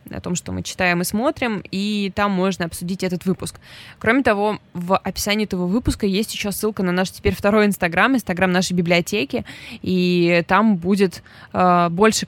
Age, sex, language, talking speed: 20-39, female, Russian, 170 wpm